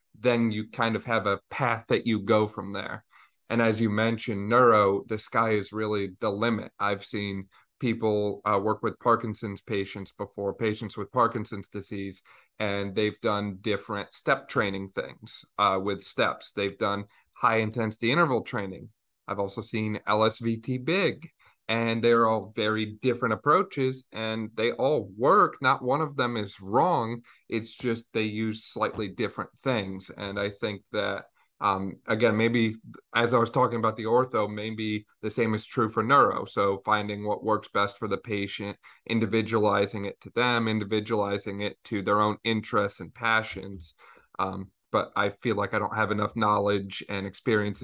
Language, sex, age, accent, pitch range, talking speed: English, male, 30-49, American, 100-115 Hz, 165 wpm